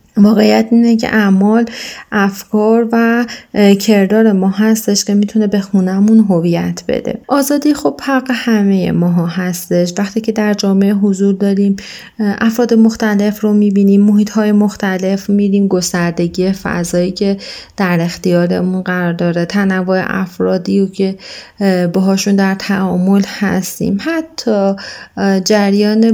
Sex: female